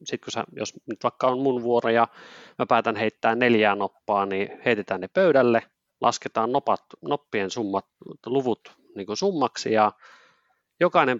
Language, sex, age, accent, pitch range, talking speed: Finnish, male, 30-49, native, 100-125 Hz, 155 wpm